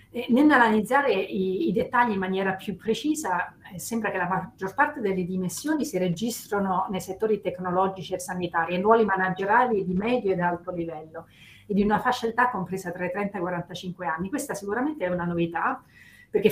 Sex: female